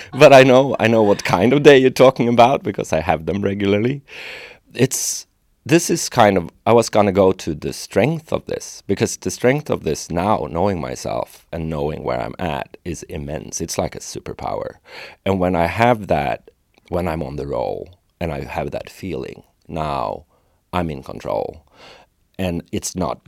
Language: English